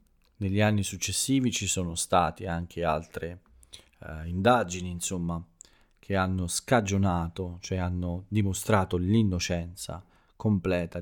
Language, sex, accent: Italian, male, native